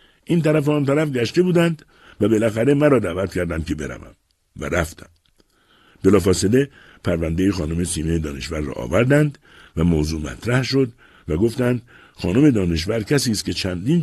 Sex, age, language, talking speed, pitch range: male, 60-79, Persian, 150 wpm, 90-135 Hz